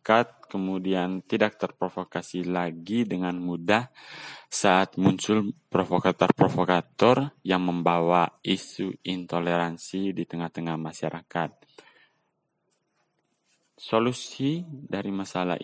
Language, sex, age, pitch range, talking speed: Indonesian, male, 20-39, 90-110 Hz, 75 wpm